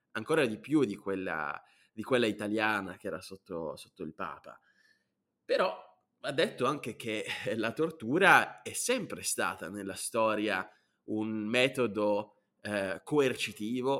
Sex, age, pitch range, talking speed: male, 20-39, 105-135 Hz, 130 wpm